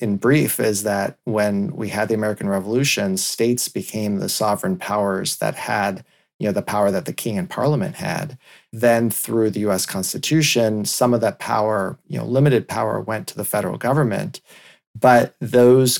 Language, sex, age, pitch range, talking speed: English, male, 30-49, 105-130 Hz, 175 wpm